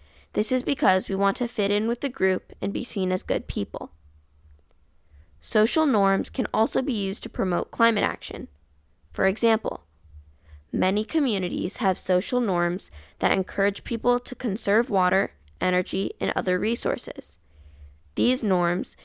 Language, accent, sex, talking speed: English, American, female, 145 wpm